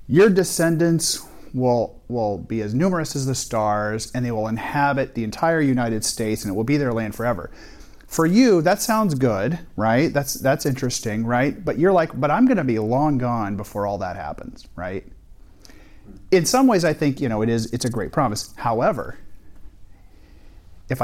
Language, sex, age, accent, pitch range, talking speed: English, male, 40-59, American, 105-140 Hz, 185 wpm